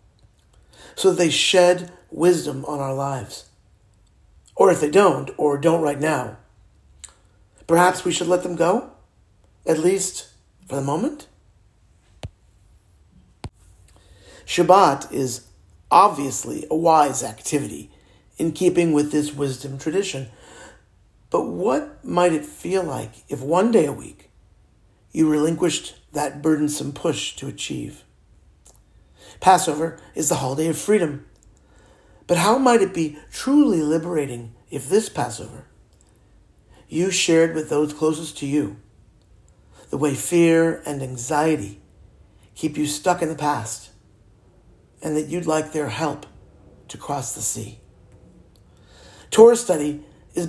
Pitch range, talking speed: 105-165 Hz, 125 wpm